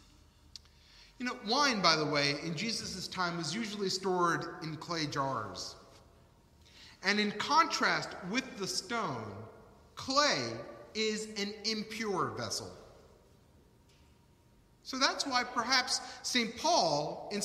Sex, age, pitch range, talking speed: male, 40-59, 180-250 Hz, 115 wpm